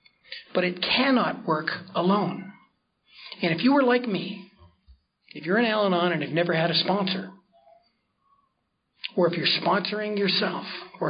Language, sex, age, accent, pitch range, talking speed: English, male, 40-59, American, 175-215 Hz, 145 wpm